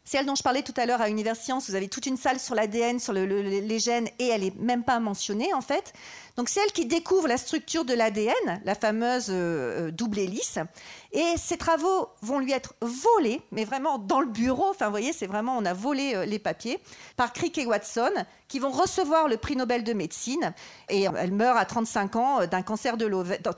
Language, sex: French, female